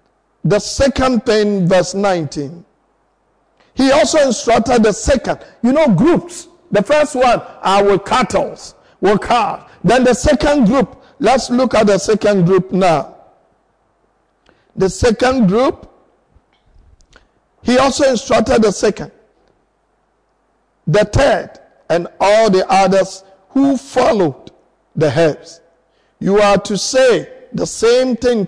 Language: English